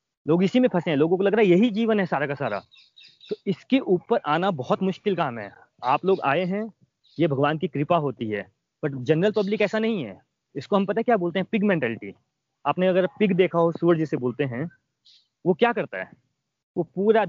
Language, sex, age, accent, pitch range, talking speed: Hindi, male, 30-49, native, 155-205 Hz, 220 wpm